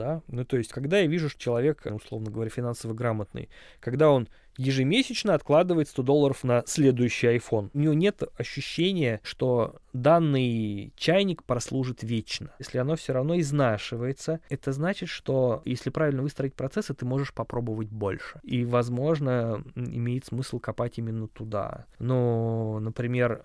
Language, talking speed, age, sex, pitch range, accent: Russian, 140 wpm, 20-39, male, 115-145 Hz, native